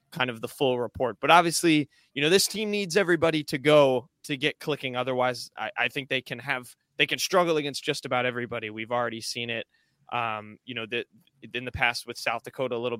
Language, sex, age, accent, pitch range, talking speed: English, male, 20-39, American, 120-155 Hz, 220 wpm